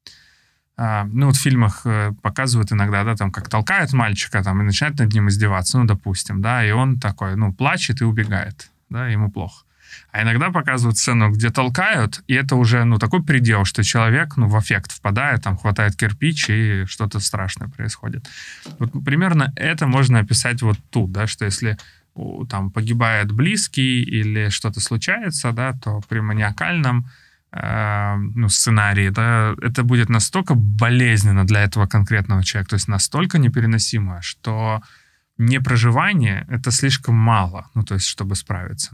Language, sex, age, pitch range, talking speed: Ukrainian, male, 20-39, 105-125 Hz, 155 wpm